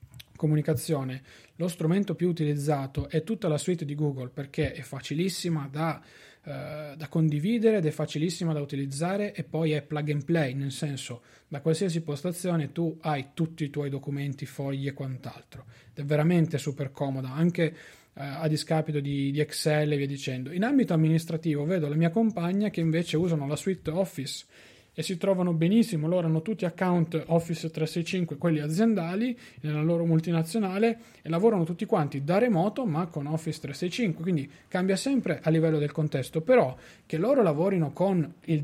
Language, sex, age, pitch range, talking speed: Italian, male, 30-49, 145-180 Hz, 170 wpm